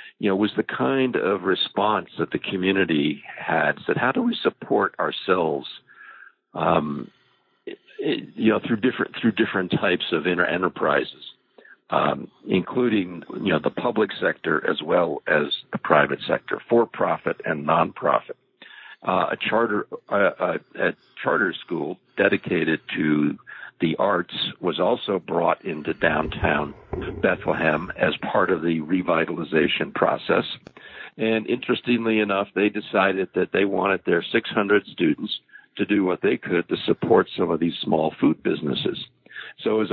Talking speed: 145 wpm